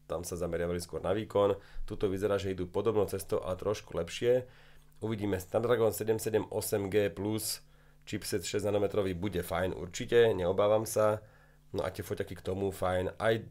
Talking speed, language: 150 wpm, English